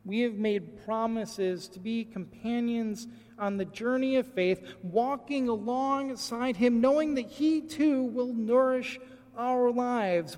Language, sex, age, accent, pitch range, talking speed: English, male, 40-59, American, 180-250 Hz, 135 wpm